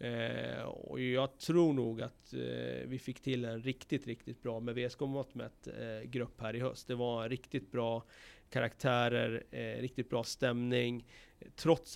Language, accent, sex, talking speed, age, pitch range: Swedish, native, male, 150 wpm, 40-59, 120-130 Hz